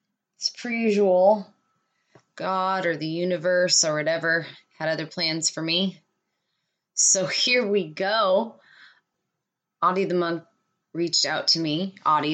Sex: female